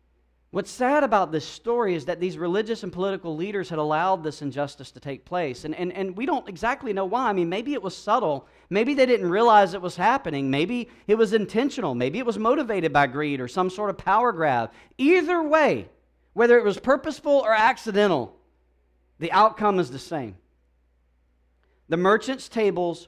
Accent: American